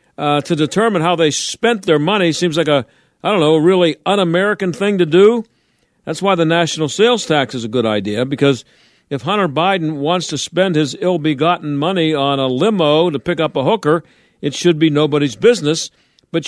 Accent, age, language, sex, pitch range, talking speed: American, 50-69, English, male, 150-185 Hz, 195 wpm